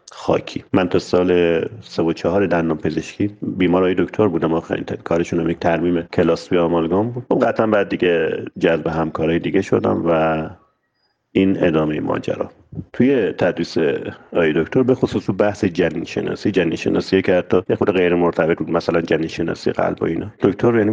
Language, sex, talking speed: Persian, male, 160 wpm